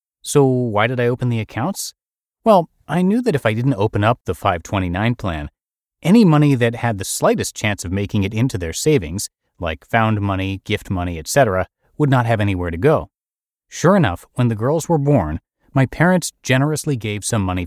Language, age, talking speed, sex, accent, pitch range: English, 30-49, 195 wpm, male, American, 95-130 Hz